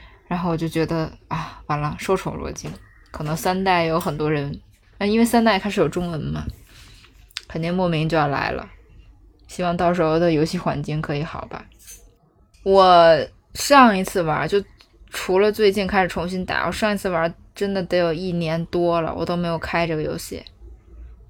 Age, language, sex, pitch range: 20-39, Chinese, female, 155-185 Hz